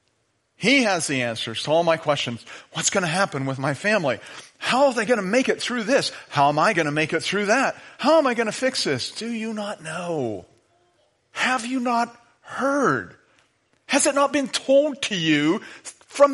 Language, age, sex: English, 40-59, male